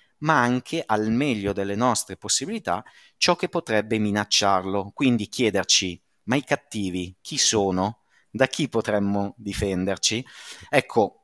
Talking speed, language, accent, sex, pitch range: 125 wpm, Italian, native, male, 100-130 Hz